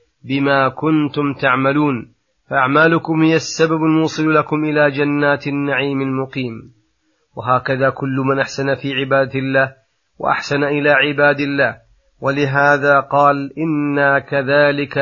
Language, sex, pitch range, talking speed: Arabic, male, 135-150 Hz, 110 wpm